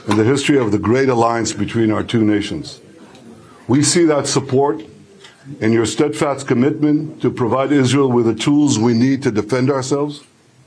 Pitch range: 115-145 Hz